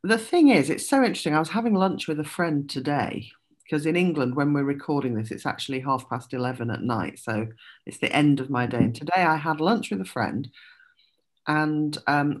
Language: English